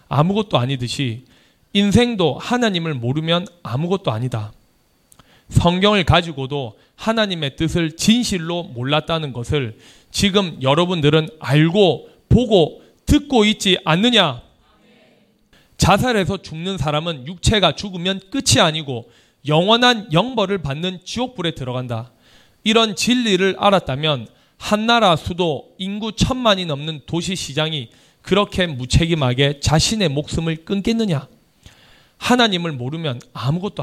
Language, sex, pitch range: Korean, male, 135-195 Hz